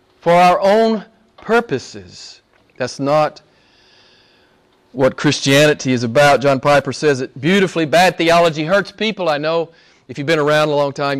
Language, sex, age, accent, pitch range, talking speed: English, male, 40-59, American, 135-225 Hz, 150 wpm